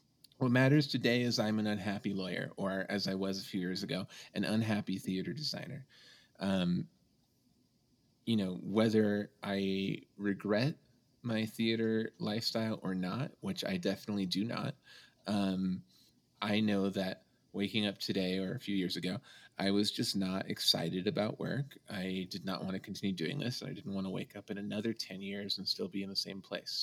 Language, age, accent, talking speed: English, 30-49, American, 180 wpm